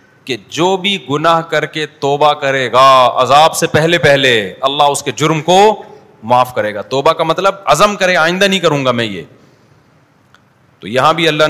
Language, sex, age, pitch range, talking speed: Urdu, male, 40-59, 130-170 Hz, 195 wpm